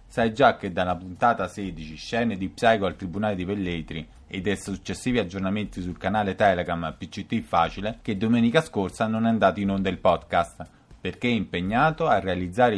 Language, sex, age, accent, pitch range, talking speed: Italian, male, 30-49, native, 95-120 Hz, 175 wpm